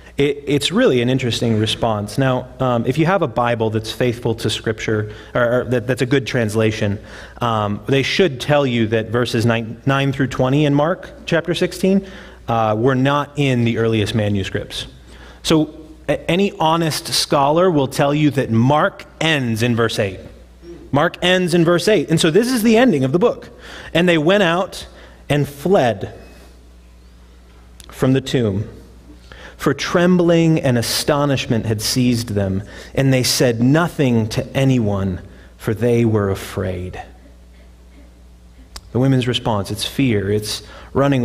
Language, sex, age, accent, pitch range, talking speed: English, male, 30-49, American, 105-145 Hz, 150 wpm